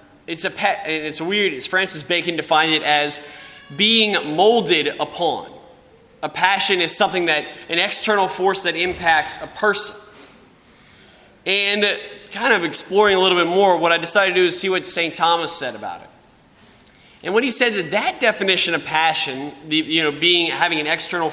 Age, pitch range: 20-39, 155-190 Hz